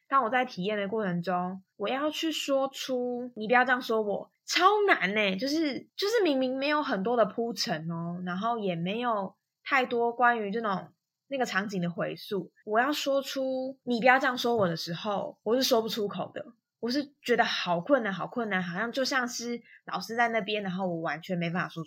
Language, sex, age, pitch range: Chinese, female, 20-39, 180-255 Hz